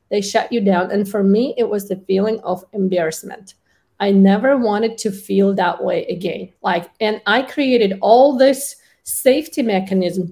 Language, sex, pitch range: English, female, 195-245 Hz